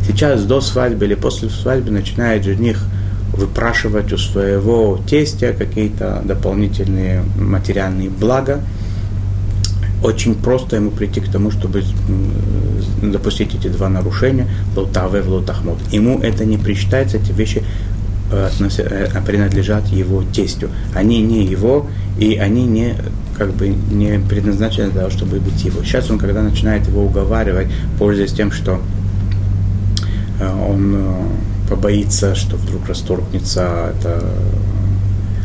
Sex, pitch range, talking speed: male, 95-105 Hz, 115 wpm